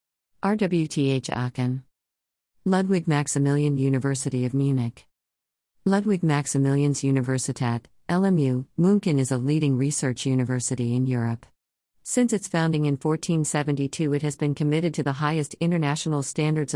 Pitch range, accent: 130-155 Hz, American